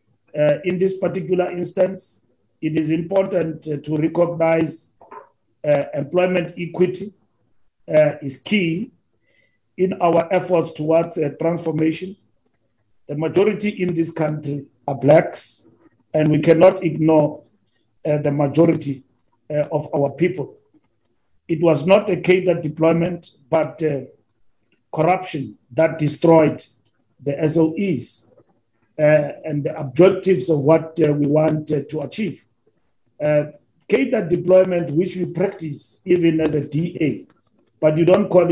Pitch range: 150-175 Hz